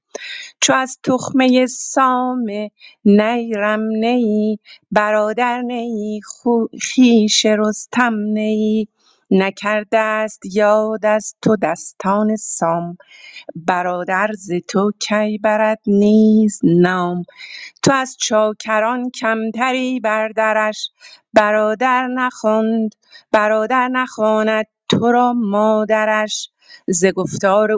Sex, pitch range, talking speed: female, 195-220 Hz, 85 wpm